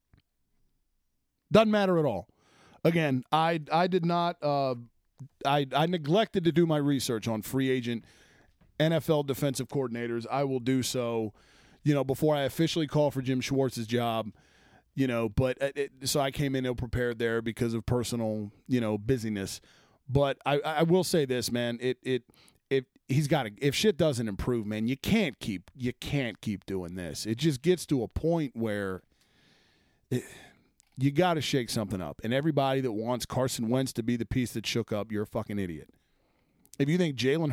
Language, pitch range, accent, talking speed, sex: English, 115-165 Hz, American, 180 wpm, male